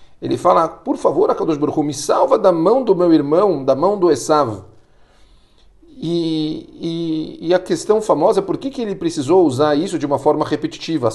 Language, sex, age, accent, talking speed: Portuguese, male, 40-59, Brazilian, 190 wpm